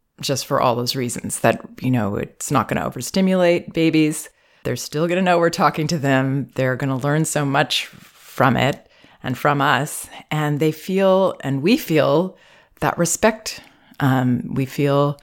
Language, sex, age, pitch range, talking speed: English, female, 30-49, 135-170 Hz, 175 wpm